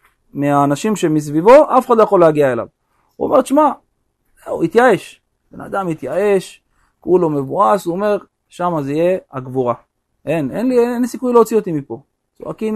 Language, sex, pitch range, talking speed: Hebrew, male, 165-230 Hz, 160 wpm